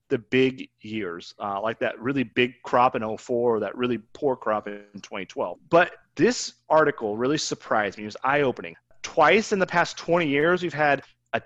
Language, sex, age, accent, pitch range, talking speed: English, male, 30-49, American, 115-150 Hz, 185 wpm